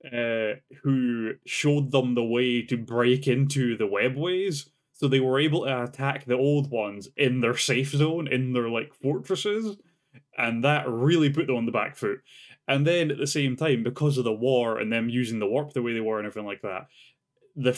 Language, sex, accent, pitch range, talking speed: English, male, British, 120-145 Hz, 205 wpm